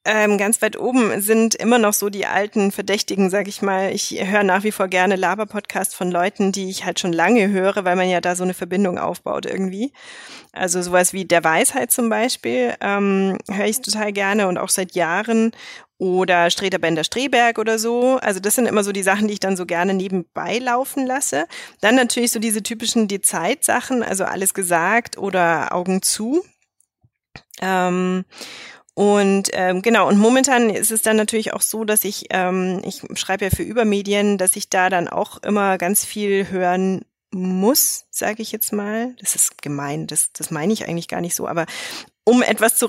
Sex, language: female, German